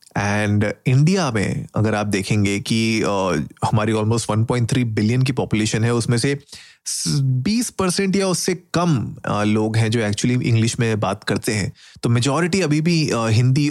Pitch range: 115-155 Hz